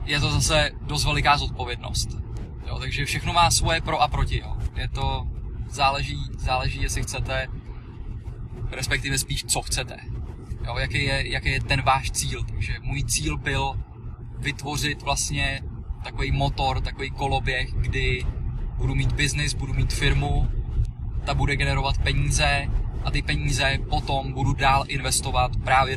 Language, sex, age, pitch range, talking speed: Czech, male, 20-39, 115-140 Hz, 145 wpm